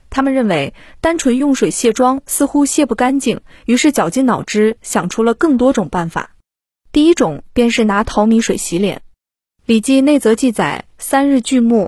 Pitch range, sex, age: 210-255 Hz, female, 20-39